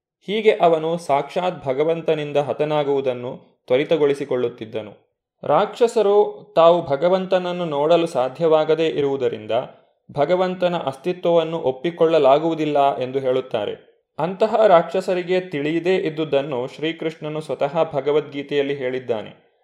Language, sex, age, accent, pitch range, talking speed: Kannada, male, 20-39, native, 140-180 Hz, 75 wpm